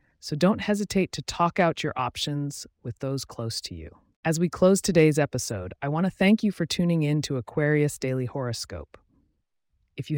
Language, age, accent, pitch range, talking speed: English, 30-49, American, 120-165 Hz, 190 wpm